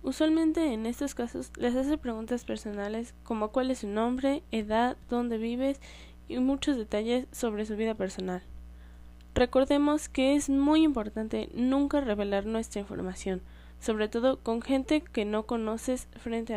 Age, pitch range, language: 10-29, 185-240 Hz, Spanish